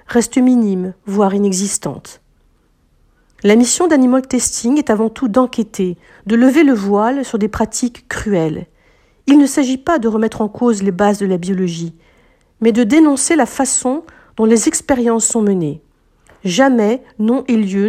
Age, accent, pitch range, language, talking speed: 50-69, French, 205-260 Hz, French, 160 wpm